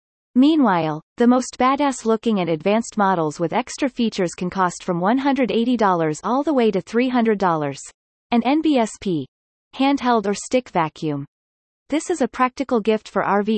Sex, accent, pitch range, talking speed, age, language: female, American, 185-245 Hz, 140 wpm, 30-49, English